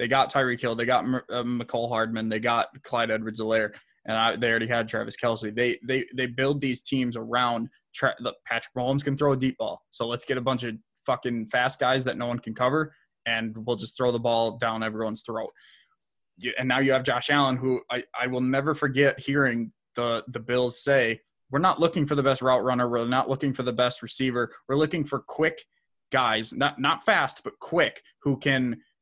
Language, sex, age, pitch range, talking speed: English, male, 20-39, 120-140 Hz, 215 wpm